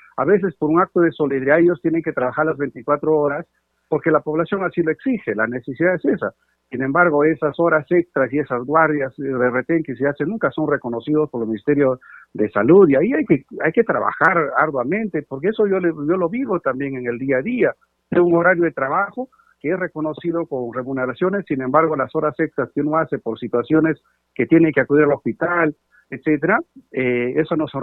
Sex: male